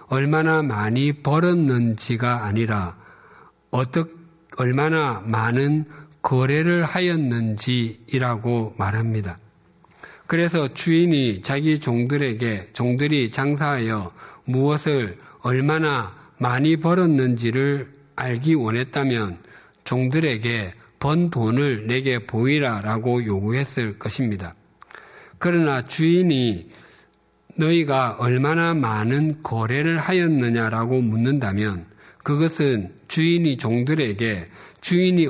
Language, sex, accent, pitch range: Korean, male, native, 110-150 Hz